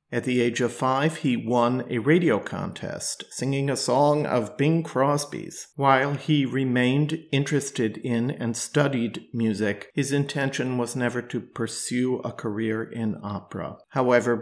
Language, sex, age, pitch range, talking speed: English, male, 50-69, 110-130 Hz, 145 wpm